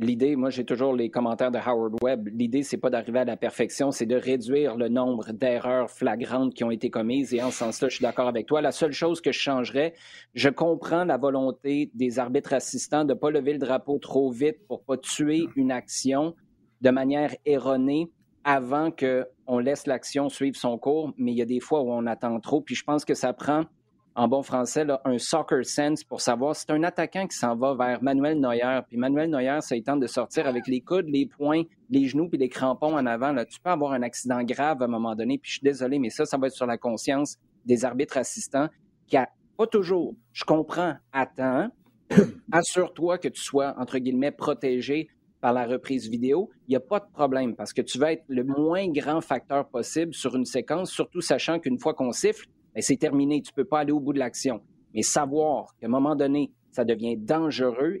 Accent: Canadian